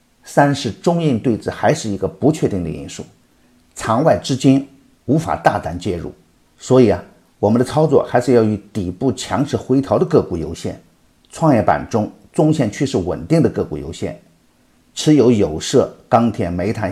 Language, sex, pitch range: Chinese, male, 95-140 Hz